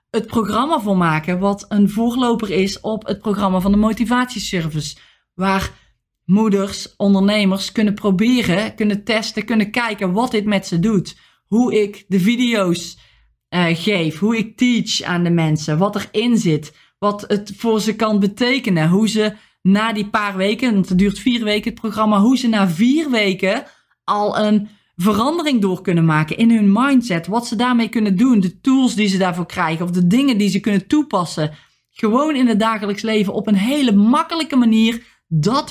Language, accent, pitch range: Dutch, Dutch, 185-225 Hz